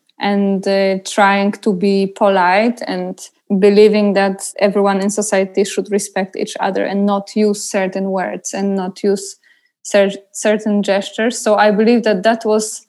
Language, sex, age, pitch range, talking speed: English, female, 20-39, 195-220 Hz, 155 wpm